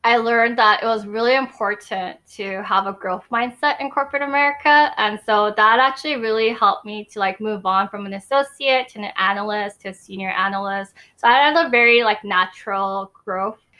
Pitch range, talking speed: 200-245 Hz, 190 wpm